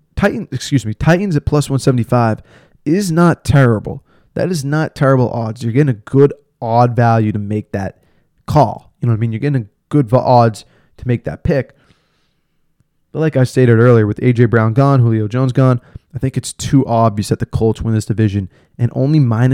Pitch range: 115-135 Hz